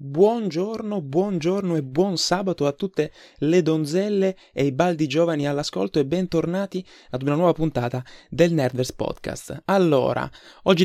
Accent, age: native, 20-39